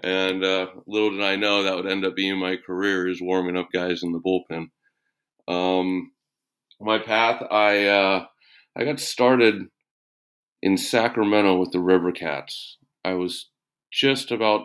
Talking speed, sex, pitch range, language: 150 wpm, male, 90-105 Hz, English